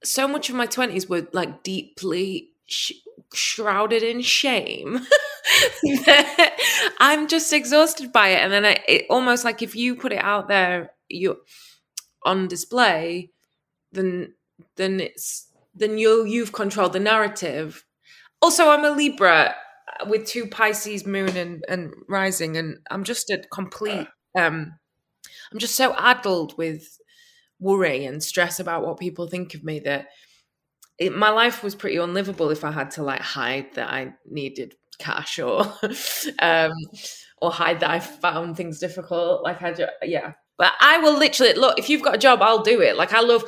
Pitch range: 175-245 Hz